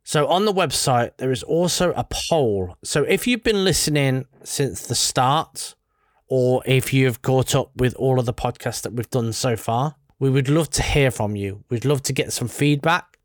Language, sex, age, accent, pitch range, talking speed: English, male, 20-39, British, 115-140 Hz, 205 wpm